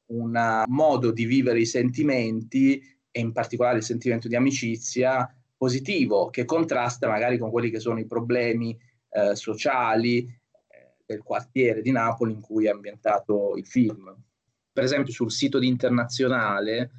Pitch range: 110-125 Hz